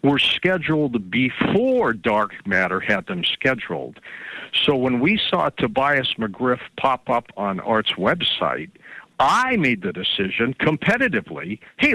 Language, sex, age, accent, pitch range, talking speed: English, male, 60-79, American, 125-165 Hz, 125 wpm